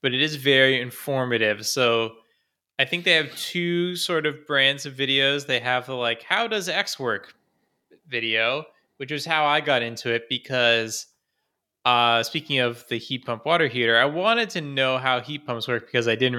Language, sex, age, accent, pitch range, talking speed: English, male, 20-39, American, 115-140 Hz, 190 wpm